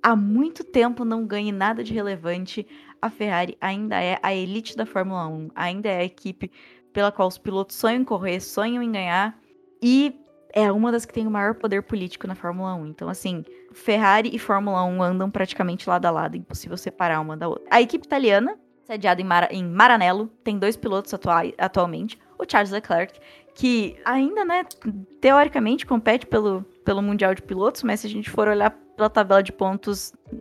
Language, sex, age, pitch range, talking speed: Portuguese, female, 10-29, 185-230 Hz, 190 wpm